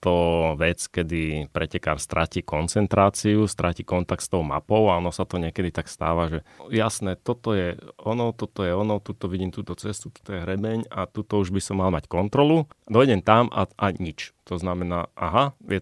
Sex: male